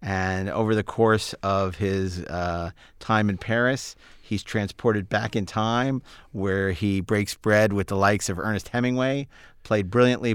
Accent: American